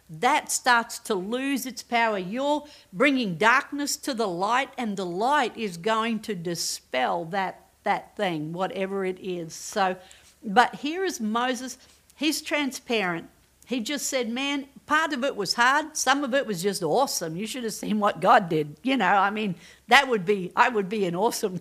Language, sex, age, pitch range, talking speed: English, female, 50-69, 190-240 Hz, 185 wpm